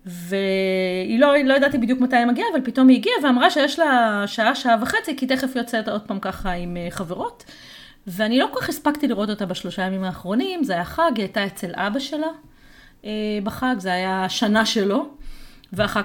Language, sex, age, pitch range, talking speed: Hebrew, female, 30-49, 205-300 Hz, 190 wpm